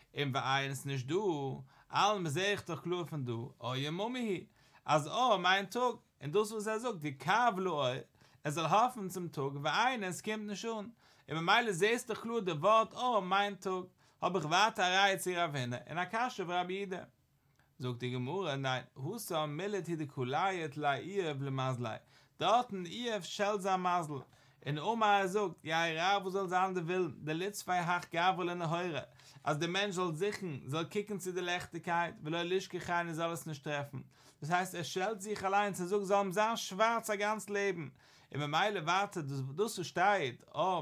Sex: male